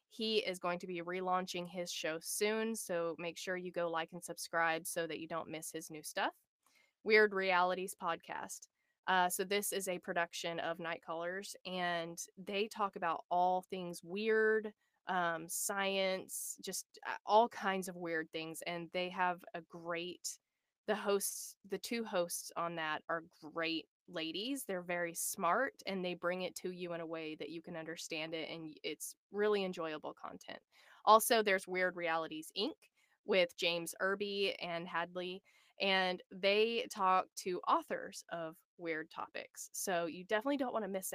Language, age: English, 20-39